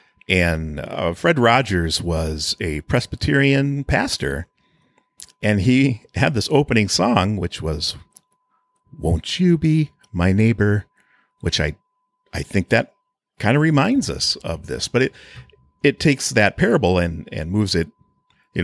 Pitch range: 90-150 Hz